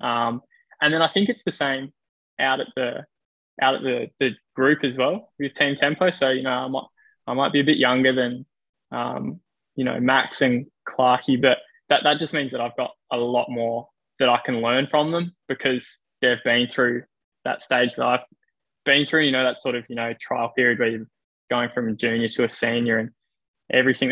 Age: 10-29